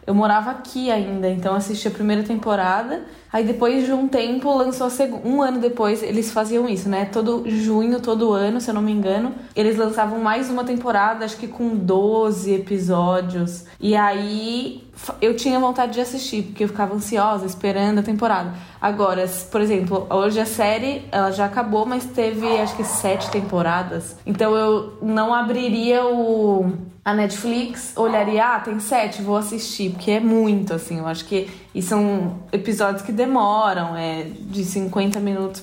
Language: Portuguese